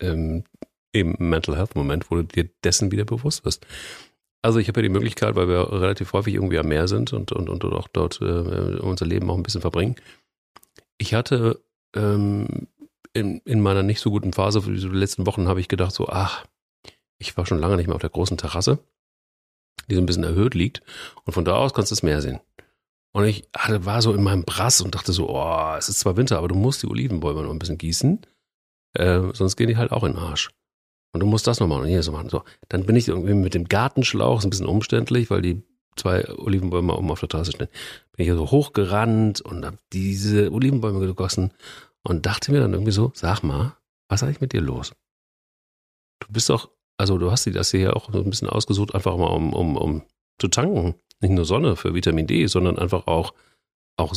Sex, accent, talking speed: male, German, 225 wpm